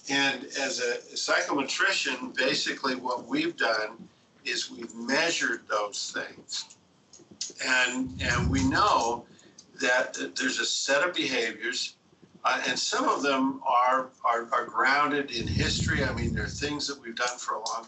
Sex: male